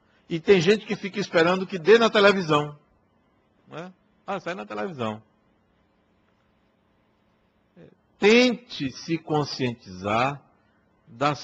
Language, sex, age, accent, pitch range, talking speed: Portuguese, male, 60-79, Brazilian, 105-155 Hz, 105 wpm